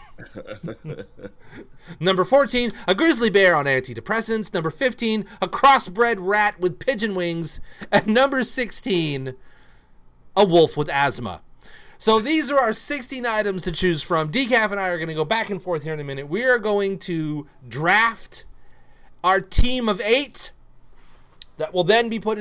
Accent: American